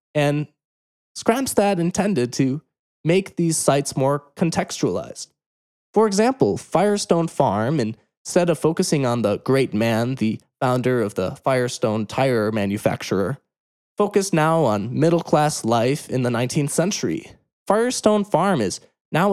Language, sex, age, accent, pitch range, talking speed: English, male, 20-39, American, 120-170 Hz, 125 wpm